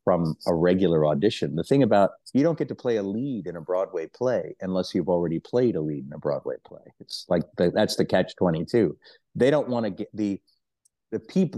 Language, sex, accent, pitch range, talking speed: English, male, American, 95-120 Hz, 210 wpm